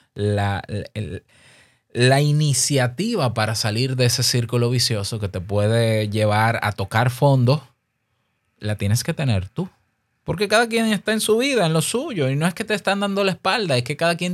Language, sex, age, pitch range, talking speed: Spanish, male, 20-39, 110-155 Hz, 190 wpm